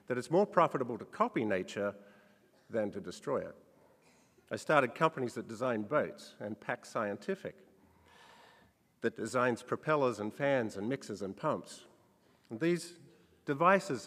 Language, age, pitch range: English, 50-69, 115-155 Hz